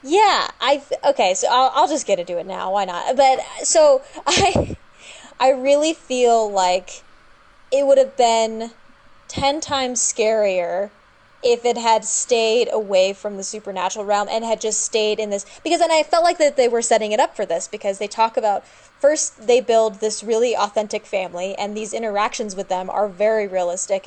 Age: 20-39